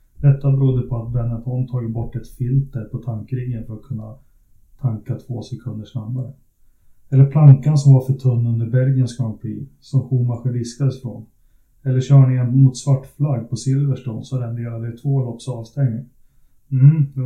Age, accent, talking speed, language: 30-49, native, 160 wpm, Swedish